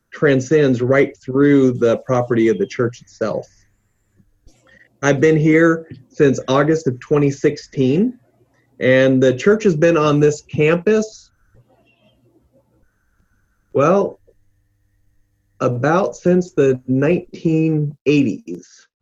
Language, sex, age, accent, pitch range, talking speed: English, male, 30-49, American, 120-150 Hz, 90 wpm